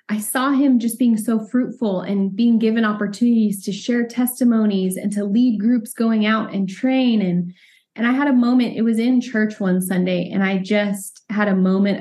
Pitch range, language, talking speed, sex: 190-230 Hz, English, 200 wpm, female